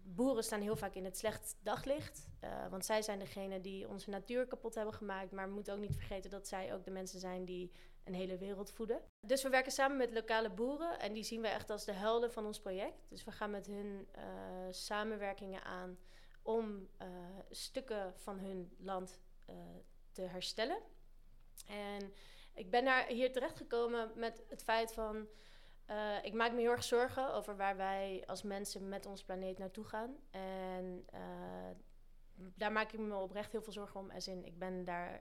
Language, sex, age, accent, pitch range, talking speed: Dutch, female, 30-49, Dutch, 185-220 Hz, 190 wpm